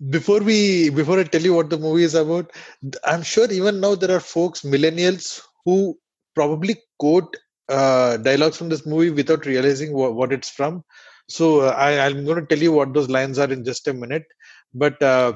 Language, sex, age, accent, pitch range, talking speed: English, male, 20-39, Indian, 130-160 Hz, 195 wpm